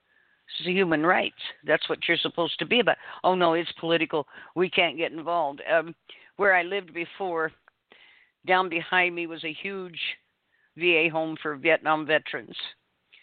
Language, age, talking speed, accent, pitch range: English, 50-69, 160 wpm, American, 150-180 Hz